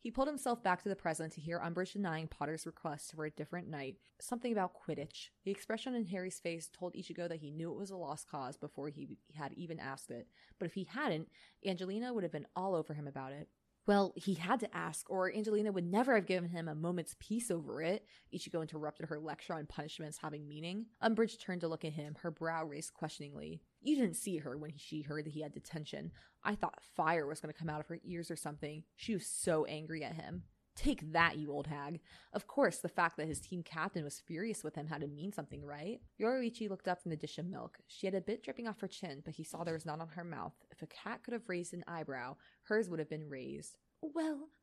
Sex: female